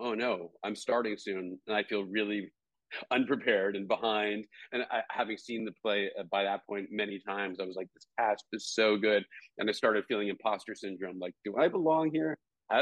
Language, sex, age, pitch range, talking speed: English, male, 40-59, 100-130 Hz, 200 wpm